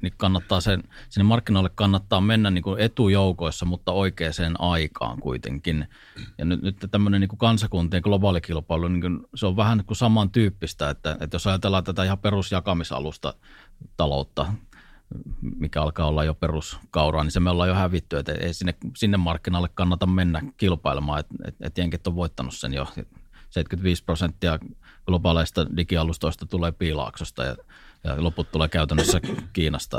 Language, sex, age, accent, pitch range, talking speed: Finnish, male, 30-49, native, 85-100 Hz, 145 wpm